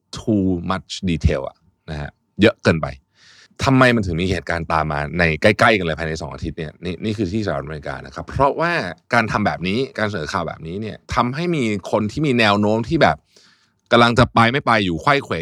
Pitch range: 85-115 Hz